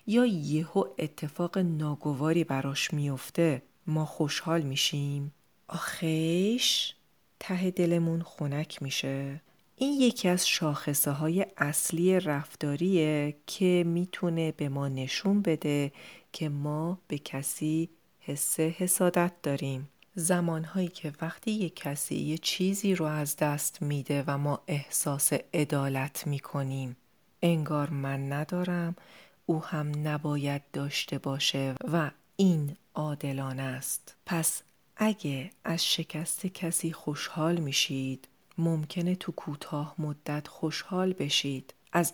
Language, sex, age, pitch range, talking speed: Persian, female, 40-59, 145-175 Hz, 110 wpm